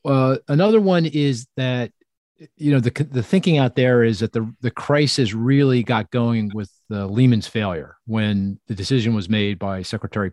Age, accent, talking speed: 40-59, American, 185 wpm